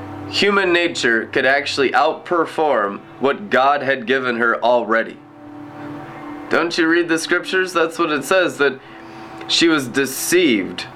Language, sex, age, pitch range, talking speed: English, male, 20-39, 120-145 Hz, 130 wpm